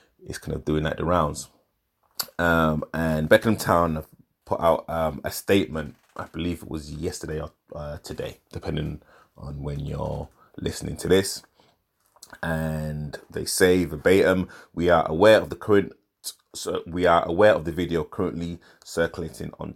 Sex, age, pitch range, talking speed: male, 30-49, 80-95 Hz, 150 wpm